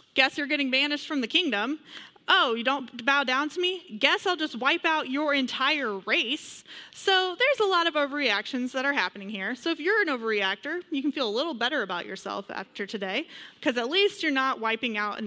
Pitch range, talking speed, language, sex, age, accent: 225-290 Hz, 215 wpm, English, female, 30-49, American